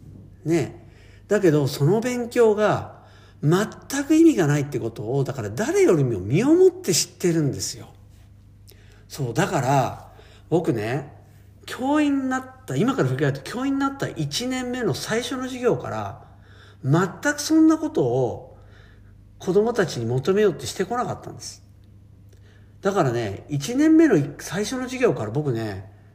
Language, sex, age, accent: Japanese, male, 50-69, native